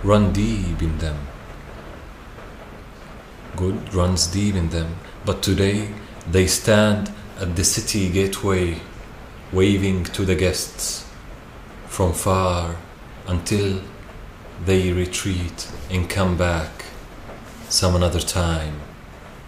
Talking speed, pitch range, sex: 100 wpm, 80-100 Hz, male